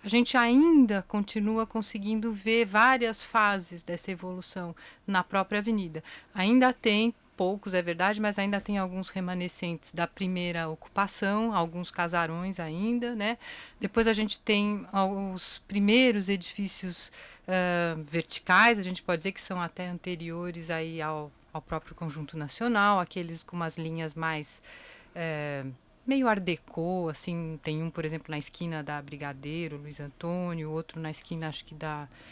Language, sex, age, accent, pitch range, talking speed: Portuguese, female, 30-49, Brazilian, 160-200 Hz, 140 wpm